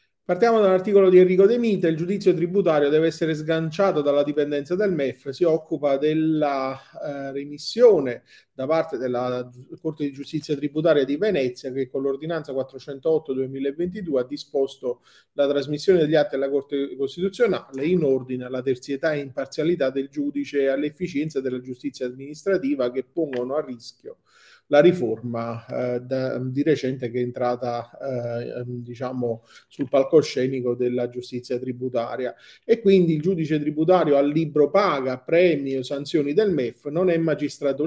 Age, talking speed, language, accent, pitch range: 30-49, 145 wpm, Italian, native, 130-165 Hz